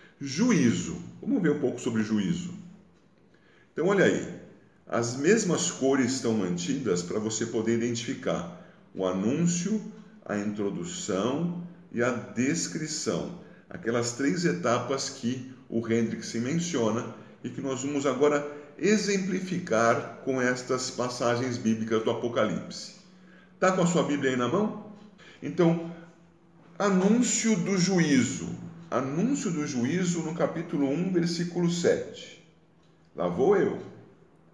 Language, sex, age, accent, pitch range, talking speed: Portuguese, male, 50-69, Brazilian, 120-185 Hz, 120 wpm